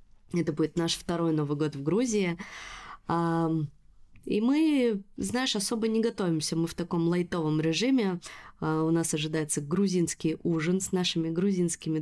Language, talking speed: Russian, 135 wpm